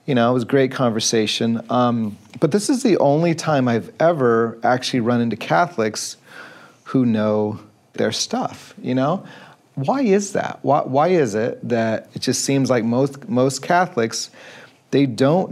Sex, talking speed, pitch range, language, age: male, 165 wpm, 115-140 Hz, English, 40-59